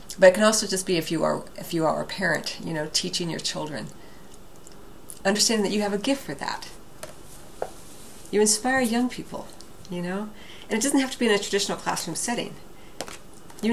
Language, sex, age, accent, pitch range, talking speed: English, female, 40-59, American, 180-220 Hz, 195 wpm